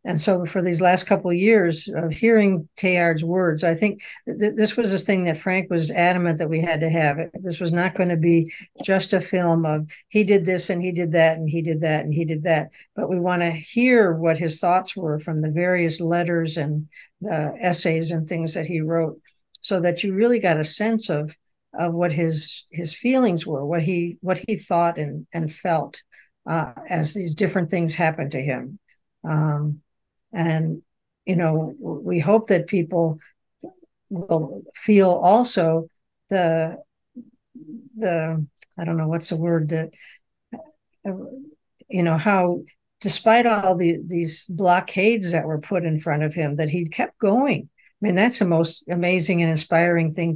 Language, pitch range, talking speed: English, 160-195 Hz, 185 wpm